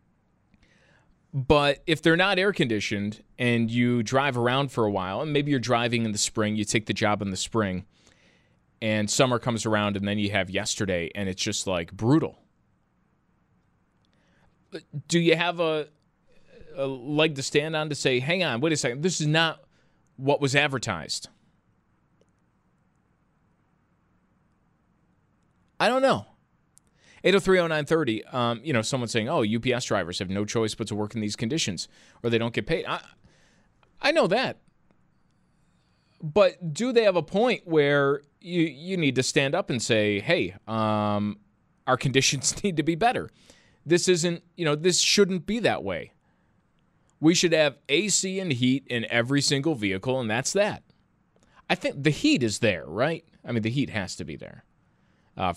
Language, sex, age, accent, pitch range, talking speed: English, male, 20-39, American, 110-160 Hz, 165 wpm